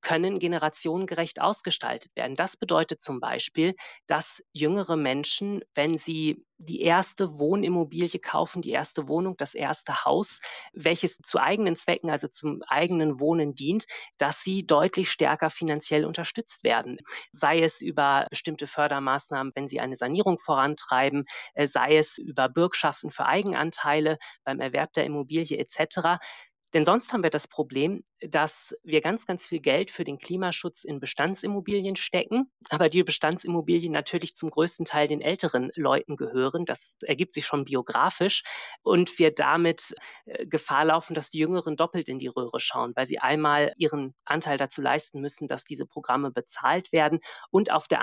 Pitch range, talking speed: 145-175 Hz, 155 wpm